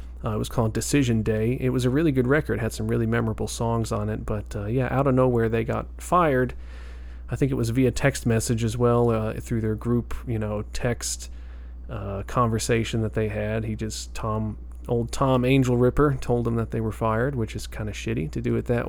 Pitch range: 105-125 Hz